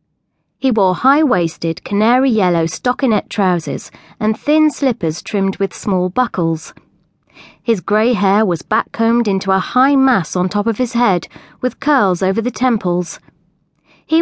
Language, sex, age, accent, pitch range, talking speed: English, female, 30-49, British, 180-250 Hz, 140 wpm